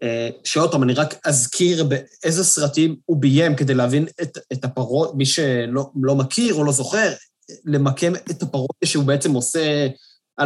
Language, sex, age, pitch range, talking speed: Hebrew, male, 20-39, 135-175 Hz, 155 wpm